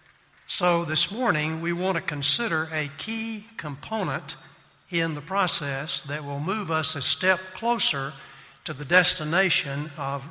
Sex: male